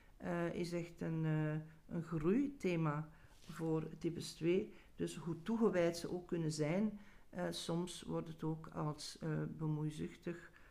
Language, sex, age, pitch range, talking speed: Dutch, male, 50-69, 155-185 Hz, 140 wpm